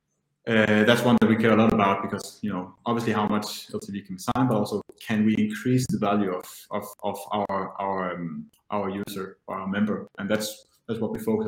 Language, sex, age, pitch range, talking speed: Danish, male, 20-39, 105-130 Hz, 220 wpm